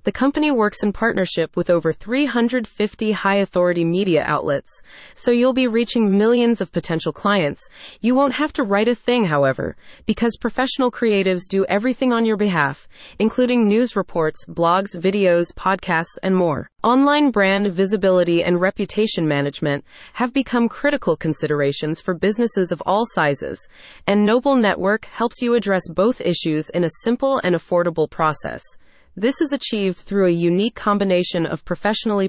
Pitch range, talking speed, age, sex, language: 170-235 Hz, 150 wpm, 30-49, female, English